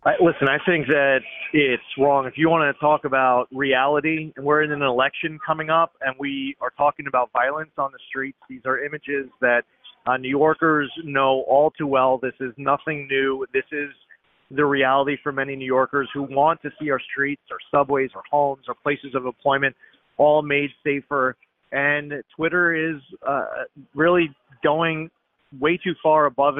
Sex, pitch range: male, 130-150 Hz